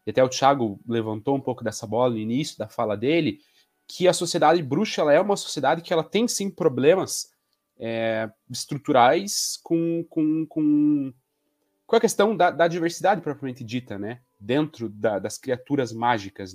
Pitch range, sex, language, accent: 110-160 Hz, male, Portuguese, Brazilian